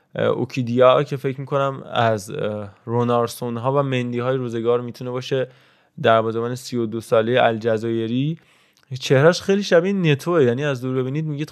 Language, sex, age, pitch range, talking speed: Persian, male, 20-39, 115-135 Hz, 140 wpm